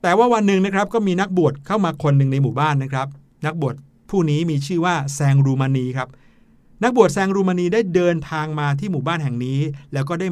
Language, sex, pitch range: Thai, male, 135-170 Hz